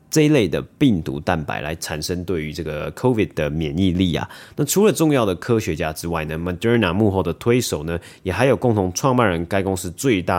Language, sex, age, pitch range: Chinese, male, 30-49, 80-110 Hz